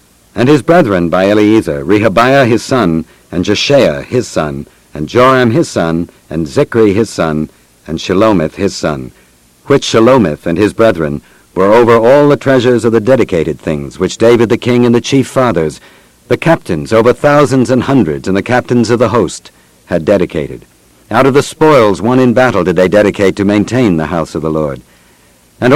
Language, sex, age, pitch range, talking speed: English, male, 60-79, 75-125 Hz, 180 wpm